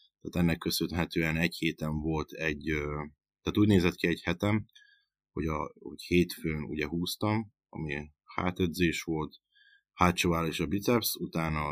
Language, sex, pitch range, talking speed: Hungarian, male, 80-100 Hz, 140 wpm